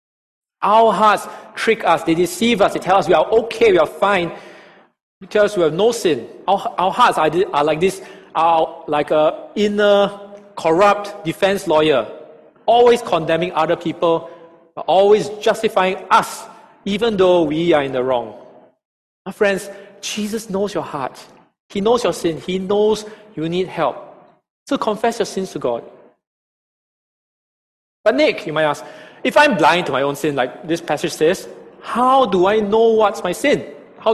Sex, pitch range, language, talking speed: male, 160-215 Hz, English, 170 wpm